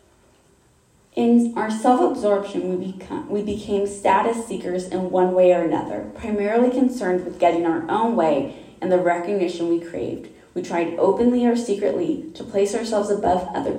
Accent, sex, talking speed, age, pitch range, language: American, female, 155 wpm, 20-39, 175-215 Hz, English